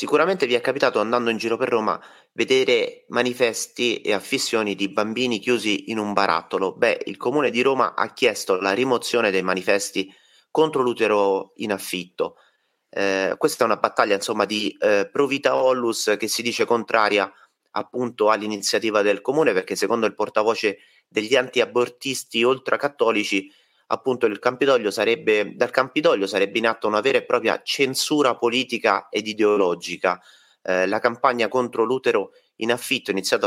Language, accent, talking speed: Italian, native, 150 wpm